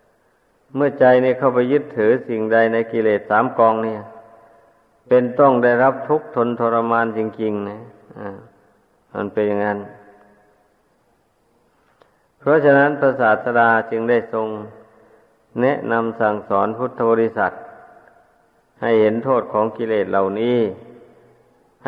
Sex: male